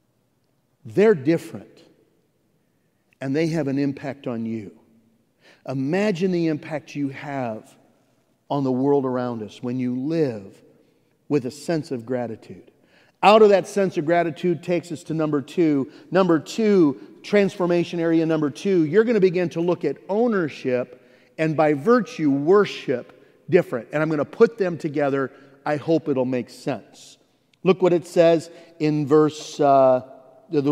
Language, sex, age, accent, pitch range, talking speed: English, male, 50-69, American, 130-170 Hz, 150 wpm